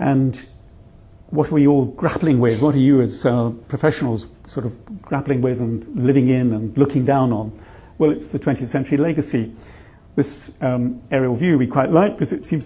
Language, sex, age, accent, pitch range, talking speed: English, male, 50-69, British, 115-140 Hz, 190 wpm